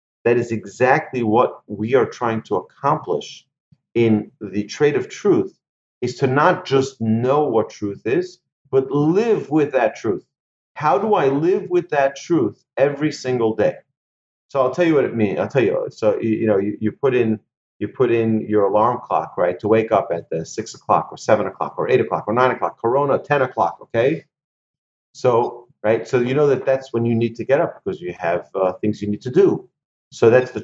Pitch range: 105-145 Hz